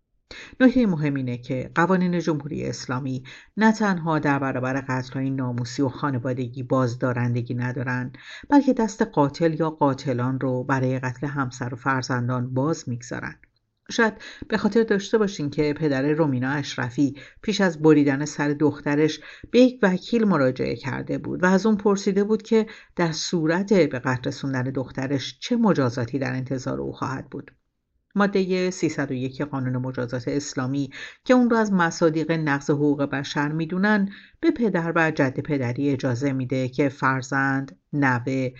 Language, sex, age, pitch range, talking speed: Persian, female, 60-79, 130-185 Hz, 145 wpm